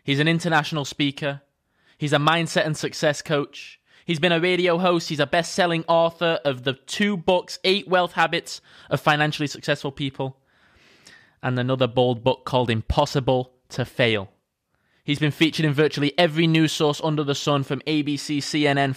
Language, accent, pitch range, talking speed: English, British, 120-155 Hz, 165 wpm